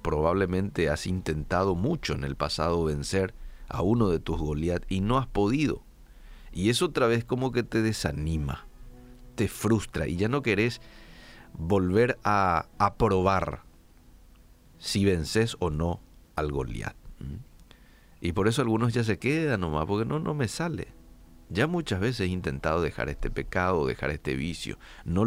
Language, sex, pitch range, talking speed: Spanish, male, 80-110 Hz, 155 wpm